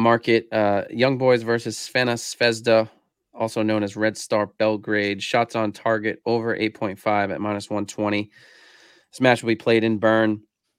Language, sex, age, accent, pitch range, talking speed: English, male, 30-49, American, 105-130 Hz, 155 wpm